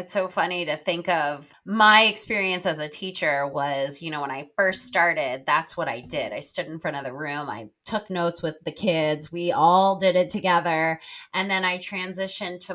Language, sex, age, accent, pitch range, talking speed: English, female, 20-39, American, 160-215 Hz, 210 wpm